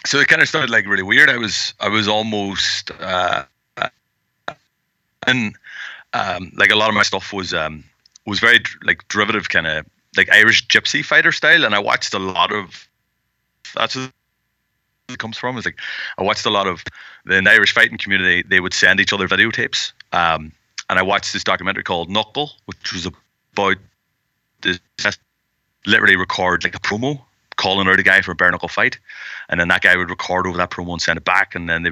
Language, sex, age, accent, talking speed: English, male, 30-49, Irish, 200 wpm